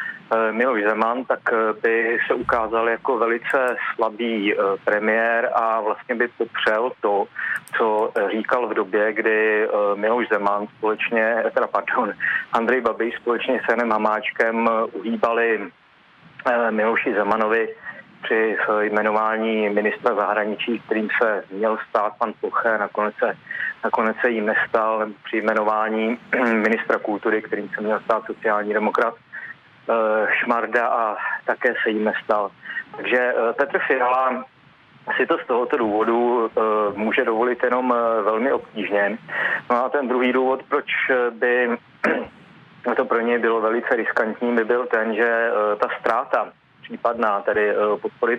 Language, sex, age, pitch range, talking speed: Czech, male, 30-49, 110-120 Hz, 125 wpm